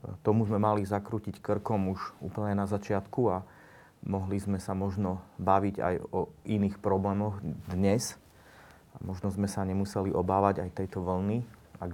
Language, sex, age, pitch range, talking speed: Slovak, male, 30-49, 95-105 Hz, 150 wpm